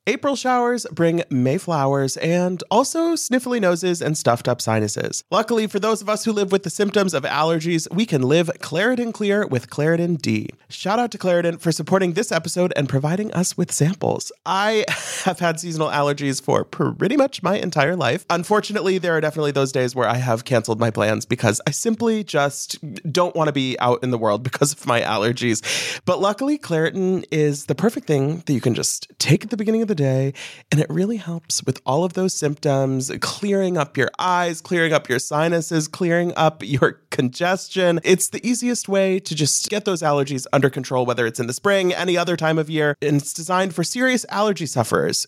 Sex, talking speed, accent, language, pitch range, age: male, 200 wpm, American, English, 145-195 Hz, 30-49